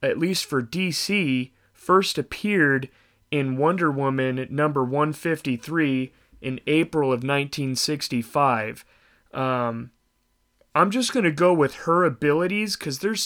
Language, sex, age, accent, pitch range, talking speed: English, male, 30-49, American, 125-155 Hz, 125 wpm